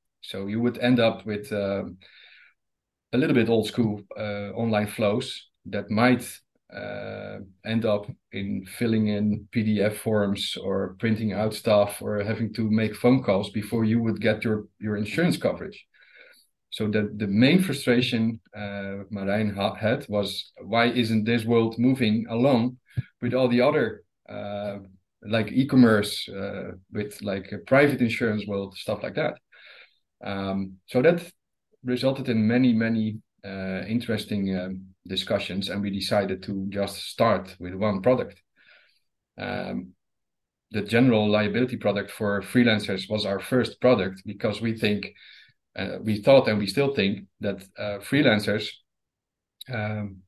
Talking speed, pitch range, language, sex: 145 wpm, 100-115 Hz, English, male